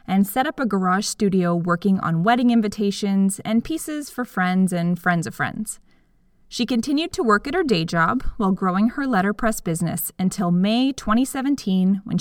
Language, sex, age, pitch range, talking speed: English, female, 20-39, 185-235 Hz, 170 wpm